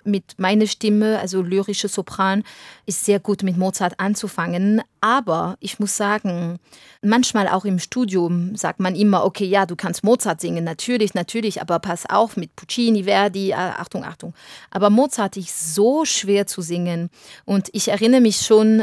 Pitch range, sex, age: 185-220 Hz, female, 30-49